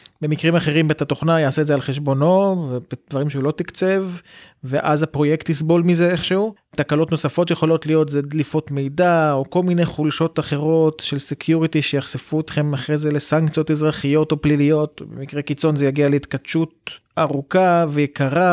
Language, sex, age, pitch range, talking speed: Hebrew, male, 30-49, 145-175 Hz, 150 wpm